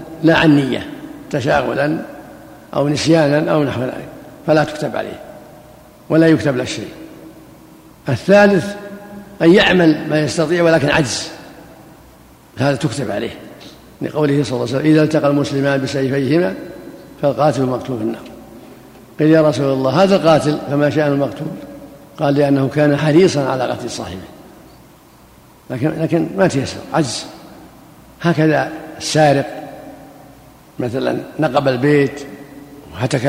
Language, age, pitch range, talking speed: Arabic, 60-79, 135-160 Hz, 120 wpm